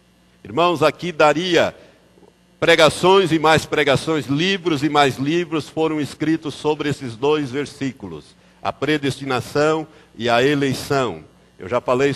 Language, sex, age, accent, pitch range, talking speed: Portuguese, male, 60-79, Brazilian, 135-180 Hz, 125 wpm